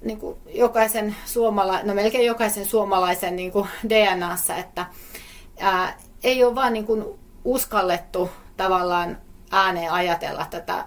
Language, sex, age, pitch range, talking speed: Finnish, female, 30-49, 175-205 Hz, 110 wpm